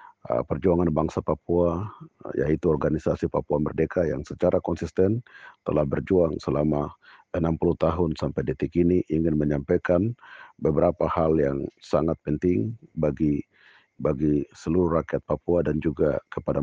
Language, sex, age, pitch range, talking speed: Malay, male, 50-69, 80-90 Hz, 120 wpm